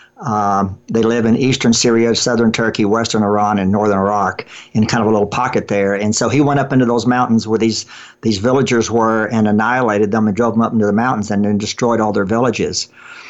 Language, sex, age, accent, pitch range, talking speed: English, male, 50-69, American, 110-125 Hz, 220 wpm